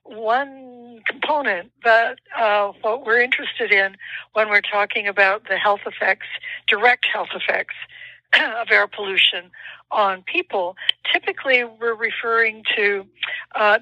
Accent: American